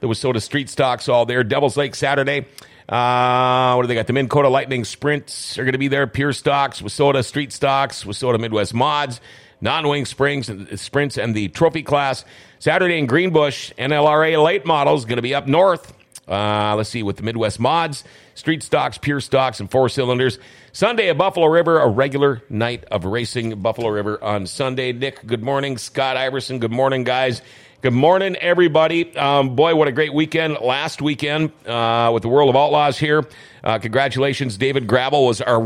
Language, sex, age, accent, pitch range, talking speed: English, male, 40-59, American, 115-145 Hz, 185 wpm